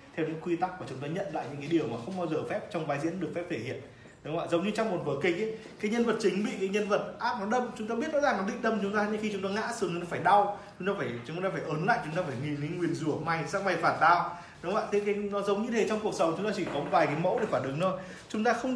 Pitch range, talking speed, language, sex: 140-195 Hz, 350 wpm, Vietnamese, male